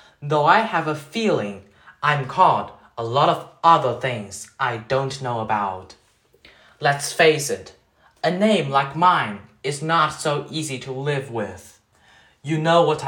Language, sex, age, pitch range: Chinese, male, 20-39, 125-175 Hz